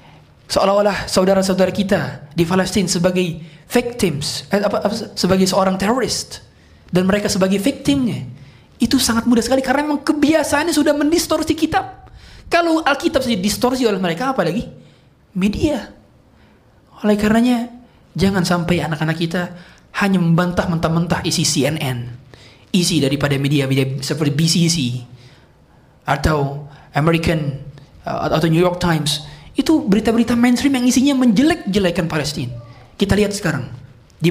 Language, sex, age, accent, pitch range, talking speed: Indonesian, male, 20-39, native, 145-230 Hz, 120 wpm